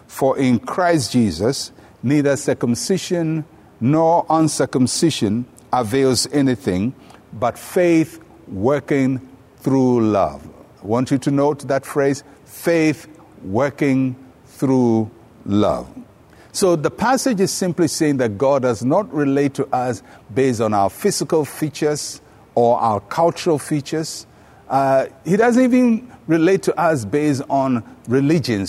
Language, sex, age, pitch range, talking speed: English, male, 60-79, 125-160 Hz, 120 wpm